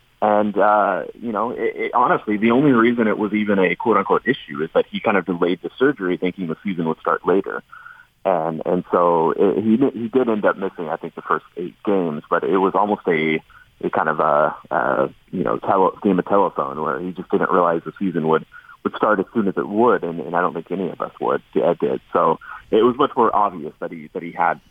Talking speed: 245 wpm